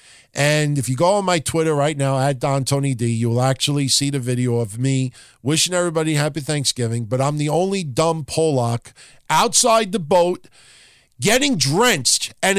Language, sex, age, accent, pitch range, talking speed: English, male, 50-69, American, 130-170 Hz, 175 wpm